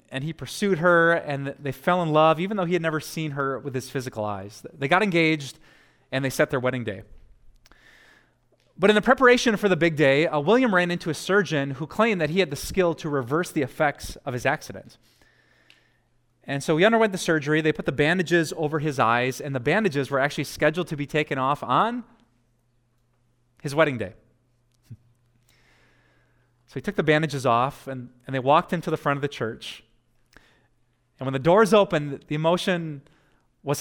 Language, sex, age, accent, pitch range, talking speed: English, male, 30-49, American, 125-160 Hz, 190 wpm